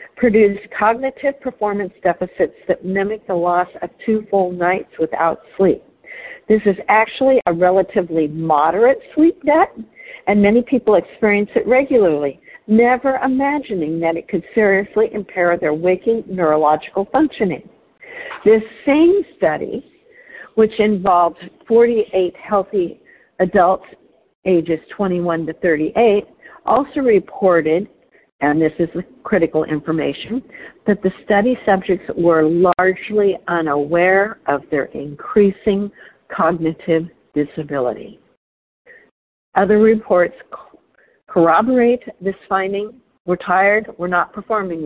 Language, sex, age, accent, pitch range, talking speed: English, female, 50-69, American, 175-235 Hz, 105 wpm